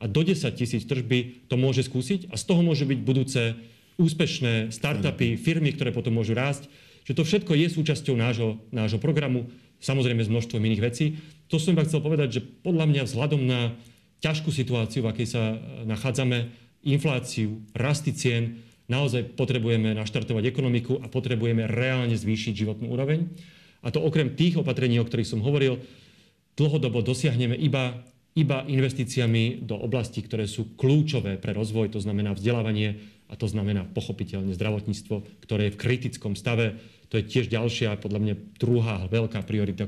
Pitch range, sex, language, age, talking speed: 105-135 Hz, male, Slovak, 40-59, 160 wpm